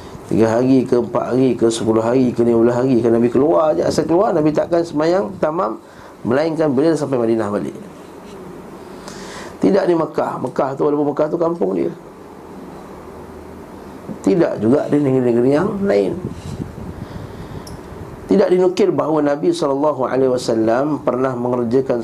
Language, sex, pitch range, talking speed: Malay, male, 120-145 Hz, 140 wpm